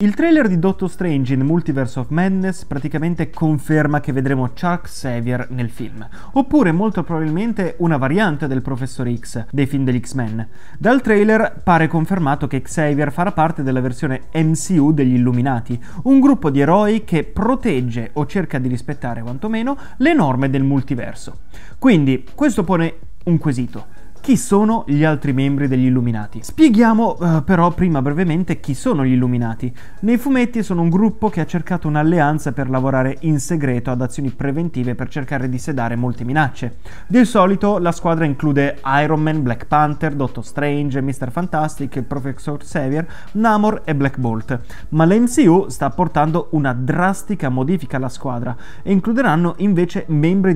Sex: male